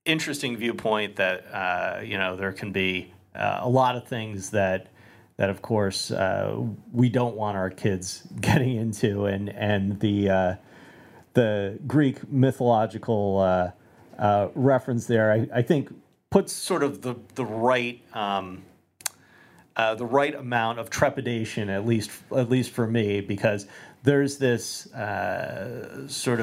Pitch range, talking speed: 100-125 Hz, 145 wpm